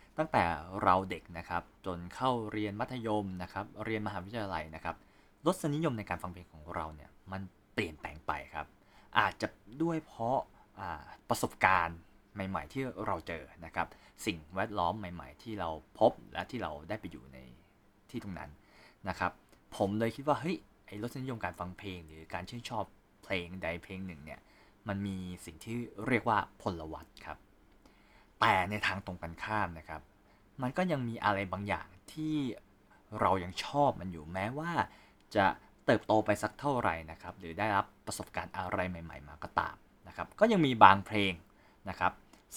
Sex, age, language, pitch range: male, 20-39, Thai, 90-110 Hz